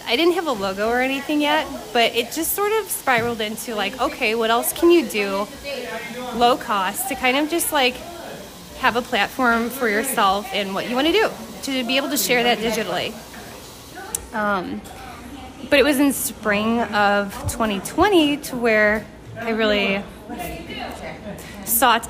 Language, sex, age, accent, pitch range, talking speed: English, female, 20-39, American, 210-255 Hz, 165 wpm